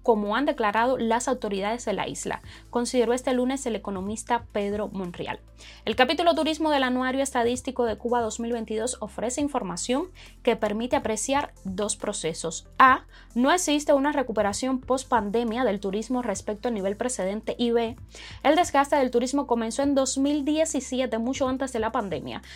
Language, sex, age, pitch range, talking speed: Spanish, female, 20-39, 215-265 Hz, 155 wpm